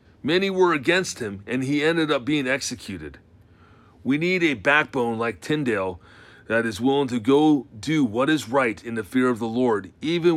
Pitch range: 110-150 Hz